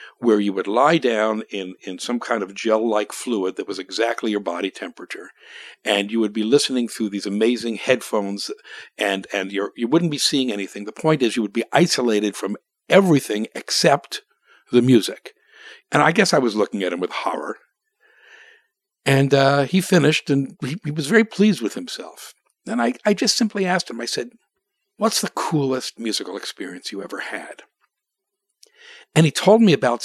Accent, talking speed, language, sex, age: American, 180 wpm, English, male, 60-79